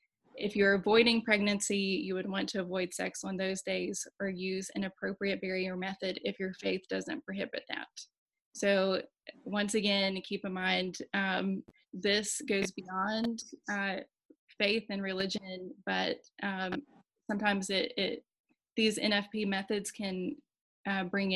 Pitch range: 190-215 Hz